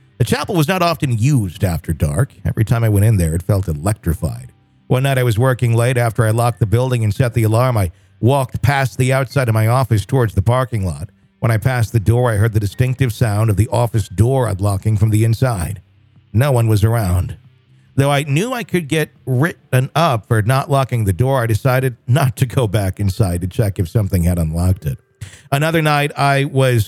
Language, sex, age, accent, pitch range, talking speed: English, male, 50-69, American, 105-130 Hz, 215 wpm